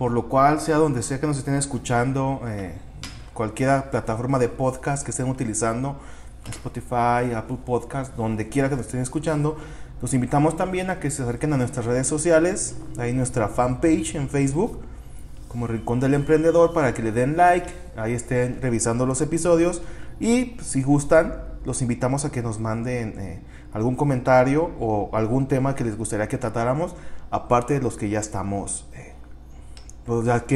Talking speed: 165 wpm